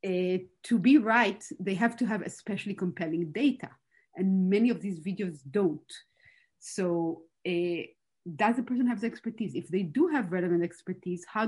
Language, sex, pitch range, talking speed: English, female, 175-235 Hz, 165 wpm